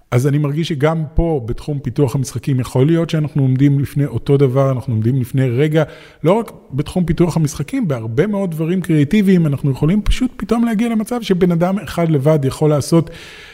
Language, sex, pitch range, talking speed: Hebrew, male, 135-185 Hz, 175 wpm